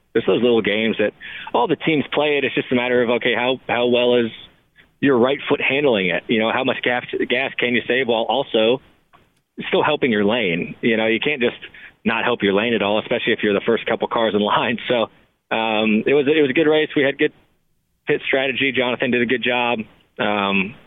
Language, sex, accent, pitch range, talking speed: English, male, American, 110-125 Hz, 230 wpm